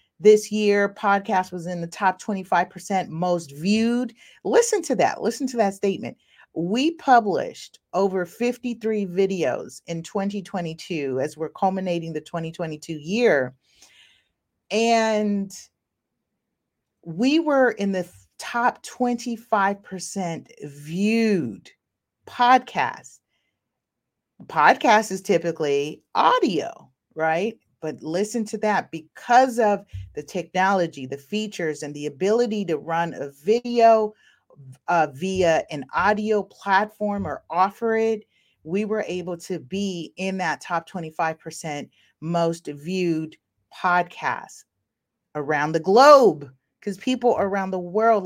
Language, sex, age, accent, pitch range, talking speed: English, female, 40-59, American, 160-215 Hz, 110 wpm